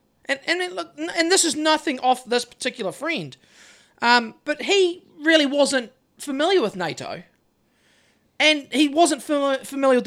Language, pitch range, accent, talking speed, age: English, 235-320 Hz, Australian, 145 wpm, 40-59